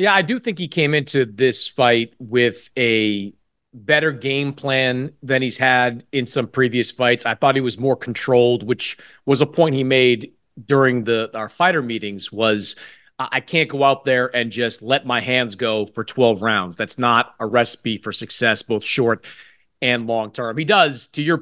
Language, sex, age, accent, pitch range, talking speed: English, male, 30-49, American, 115-145 Hz, 190 wpm